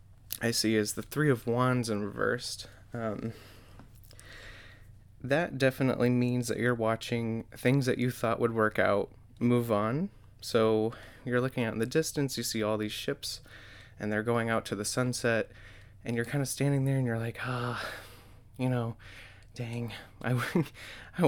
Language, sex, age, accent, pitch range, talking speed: English, male, 20-39, American, 105-120 Hz, 170 wpm